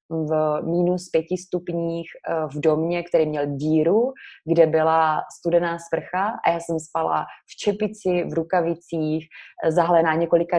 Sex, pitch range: female, 160-175 Hz